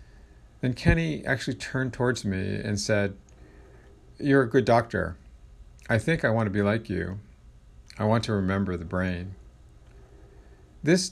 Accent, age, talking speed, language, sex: American, 50-69, 145 wpm, English, male